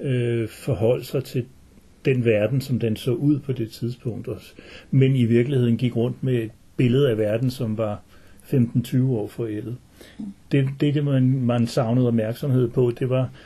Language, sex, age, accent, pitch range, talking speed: Danish, male, 60-79, native, 110-130 Hz, 170 wpm